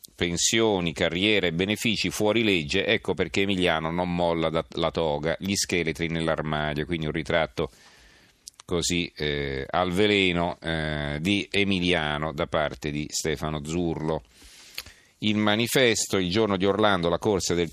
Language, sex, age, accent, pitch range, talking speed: Italian, male, 40-59, native, 80-100 Hz, 140 wpm